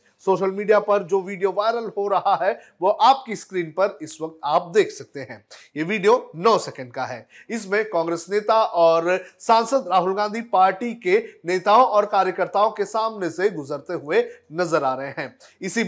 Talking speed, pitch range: 180 wpm, 165-230 Hz